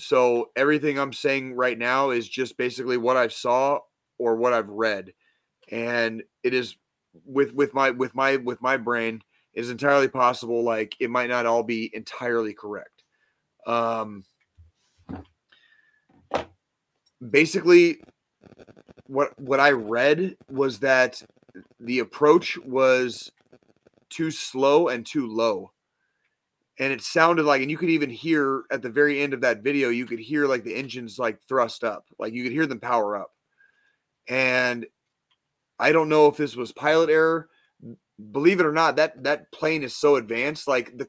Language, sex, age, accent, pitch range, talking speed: English, male, 30-49, American, 120-145 Hz, 160 wpm